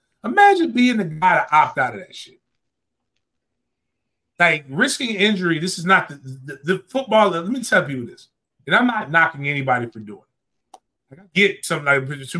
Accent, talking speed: American, 180 wpm